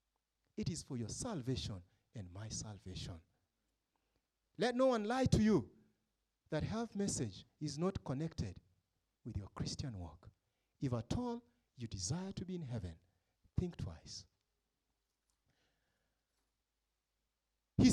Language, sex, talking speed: English, male, 120 wpm